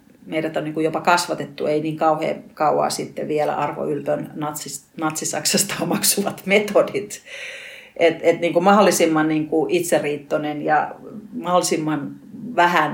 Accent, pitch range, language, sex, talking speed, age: native, 155-200 Hz, Finnish, female, 135 wpm, 40-59